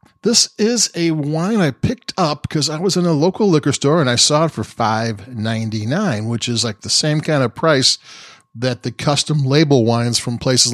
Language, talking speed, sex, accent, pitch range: English, 200 wpm, male, American, 120-145 Hz